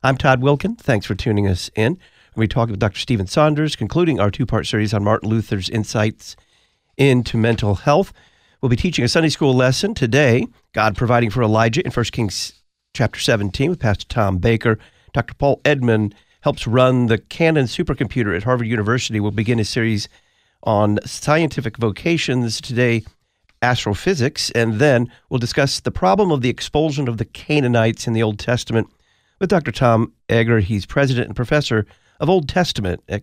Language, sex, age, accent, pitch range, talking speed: English, male, 50-69, American, 110-135 Hz, 170 wpm